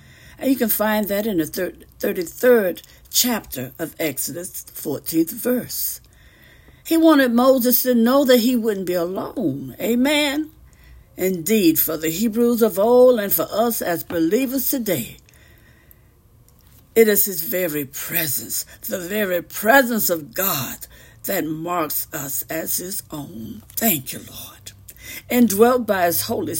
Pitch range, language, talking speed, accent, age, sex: 175-255 Hz, English, 135 wpm, American, 60-79, female